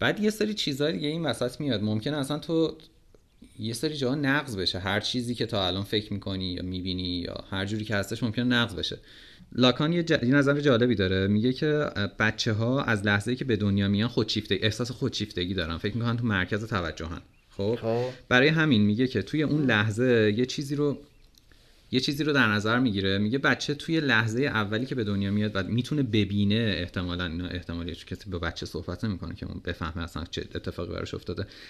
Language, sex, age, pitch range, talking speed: Persian, male, 30-49, 100-125 Hz, 195 wpm